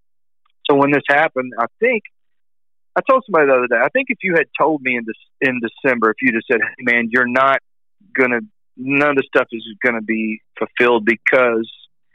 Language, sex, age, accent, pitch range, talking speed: English, male, 40-59, American, 110-130 Hz, 205 wpm